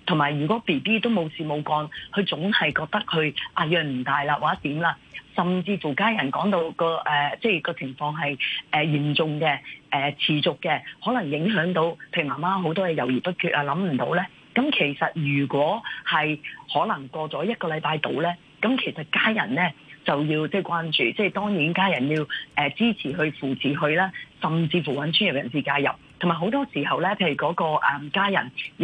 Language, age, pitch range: Chinese, 30-49, 150-195 Hz